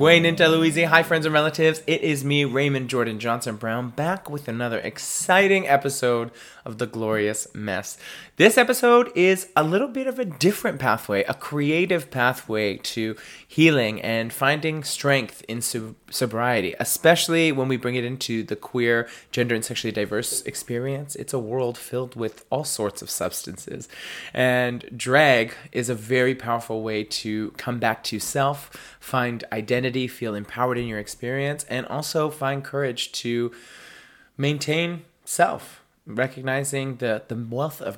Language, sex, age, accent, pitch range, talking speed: English, male, 20-39, American, 120-155 Hz, 150 wpm